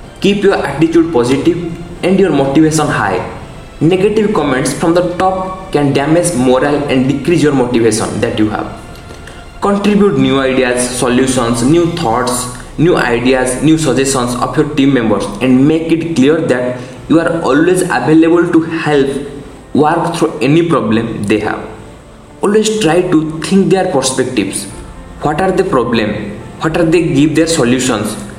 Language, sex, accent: English, male, Indian